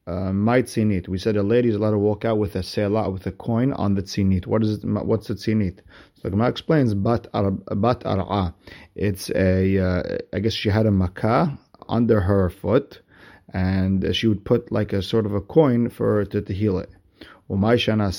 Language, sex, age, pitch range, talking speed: English, male, 30-49, 95-110 Hz, 190 wpm